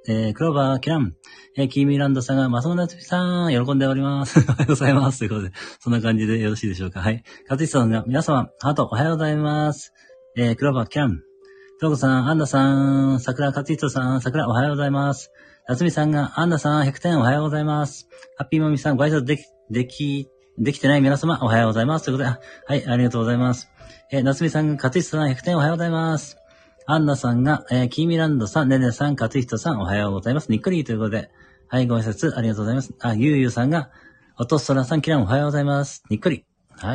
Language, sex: Japanese, male